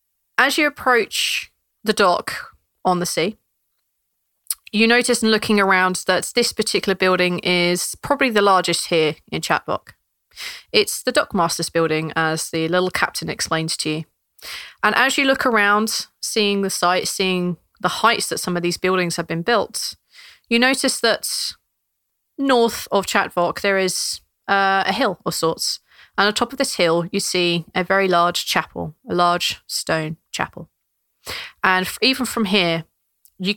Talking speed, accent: 155 wpm, British